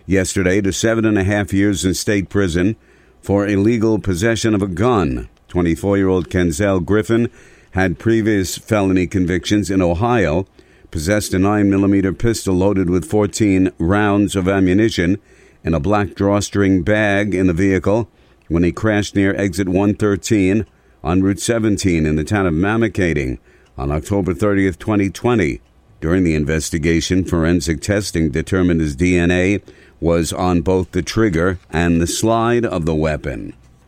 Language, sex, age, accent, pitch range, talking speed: English, male, 50-69, American, 85-100 Hz, 145 wpm